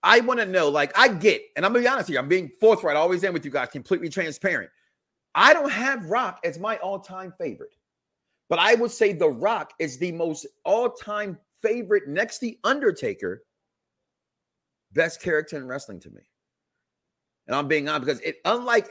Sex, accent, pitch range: male, American, 155-220 Hz